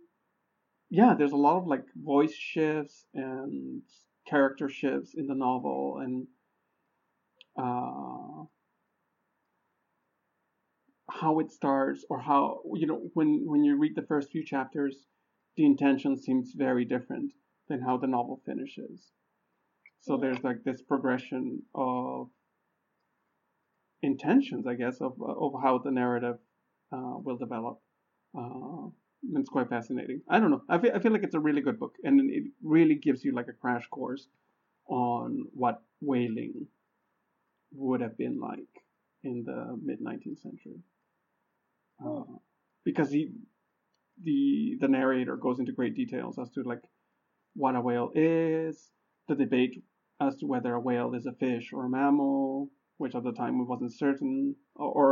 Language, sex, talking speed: English, male, 145 wpm